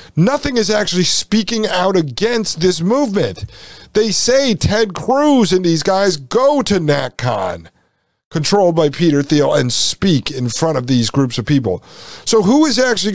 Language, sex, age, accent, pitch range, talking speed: English, male, 50-69, American, 155-220 Hz, 160 wpm